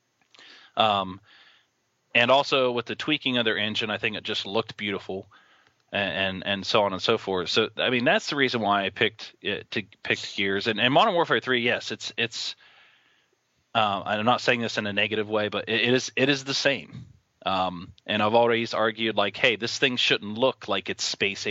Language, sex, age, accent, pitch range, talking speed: English, male, 20-39, American, 100-120 Hz, 210 wpm